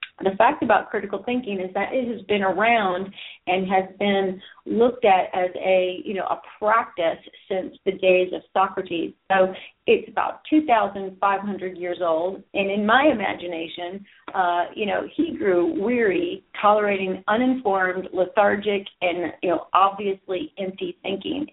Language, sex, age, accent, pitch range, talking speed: English, female, 40-59, American, 185-225 Hz, 145 wpm